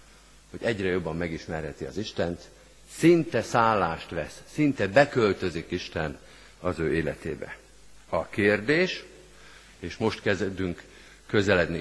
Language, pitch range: Hungarian, 90-130 Hz